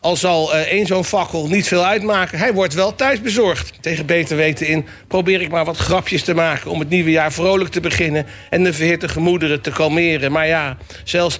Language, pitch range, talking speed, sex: Dutch, 155-205 Hz, 215 wpm, male